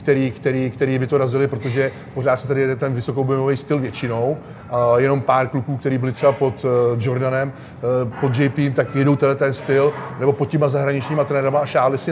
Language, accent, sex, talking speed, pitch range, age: Czech, native, male, 190 wpm, 130-150 Hz, 30-49